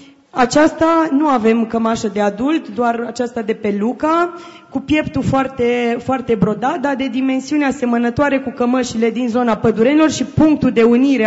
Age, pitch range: 20-39, 225-280 Hz